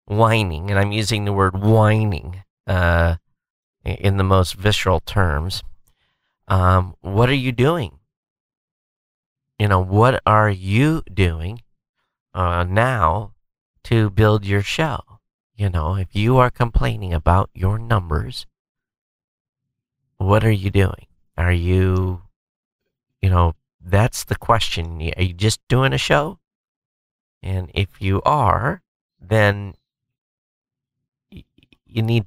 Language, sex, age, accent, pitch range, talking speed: English, male, 40-59, American, 85-105 Hz, 115 wpm